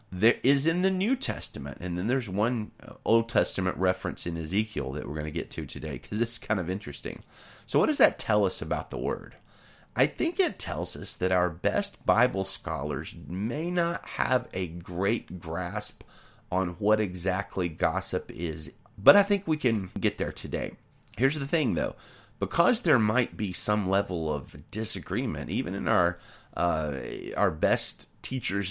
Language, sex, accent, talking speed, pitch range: English, male, American, 175 wpm, 90-115 Hz